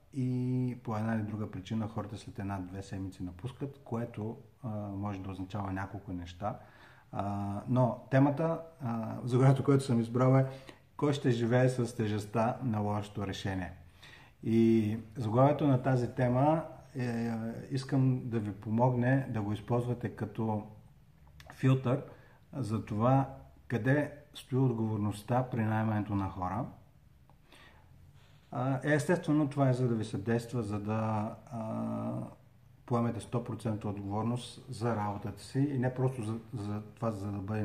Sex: male